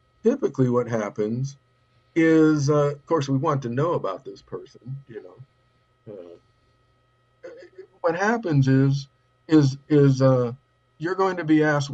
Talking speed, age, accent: 140 wpm, 50-69, American